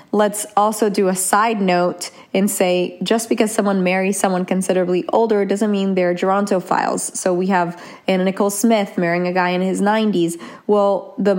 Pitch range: 185-215 Hz